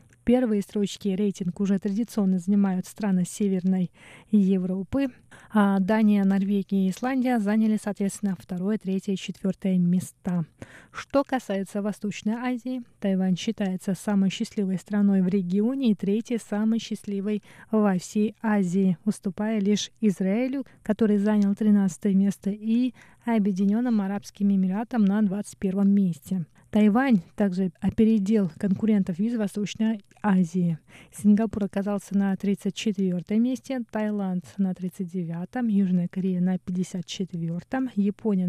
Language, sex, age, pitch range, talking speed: Russian, female, 20-39, 190-215 Hz, 120 wpm